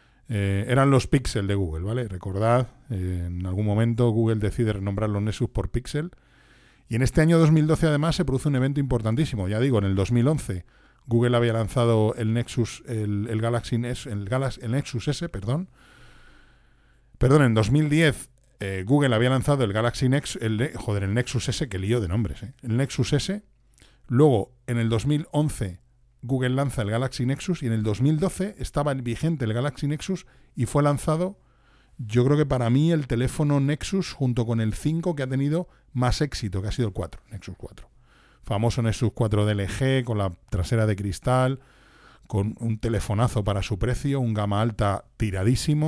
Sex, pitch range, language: male, 110-135 Hz, Spanish